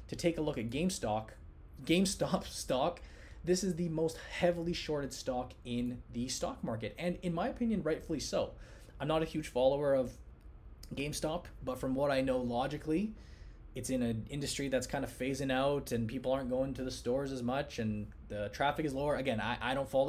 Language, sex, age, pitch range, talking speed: English, male, 20-39, 120-155 Hz, 195 wpm